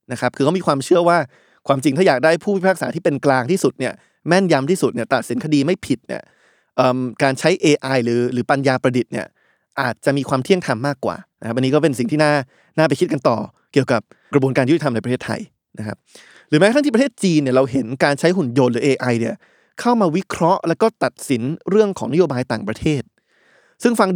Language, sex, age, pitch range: Thai, male, 20-39, 130-180 Hz